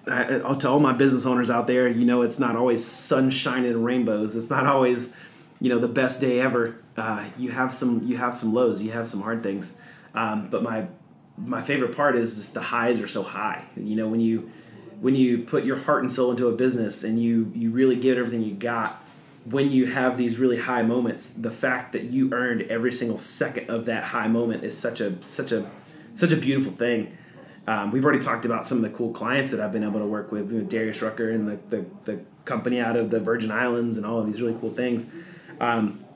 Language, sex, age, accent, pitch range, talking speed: English, male, 30-49, American, 115-125 Hz, 230 wpm